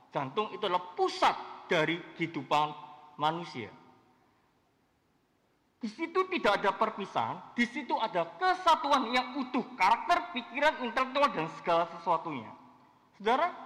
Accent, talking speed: native, 105 wpm